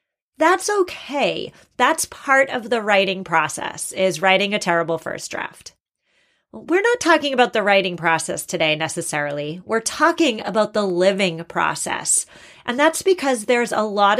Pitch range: 195-265 Hz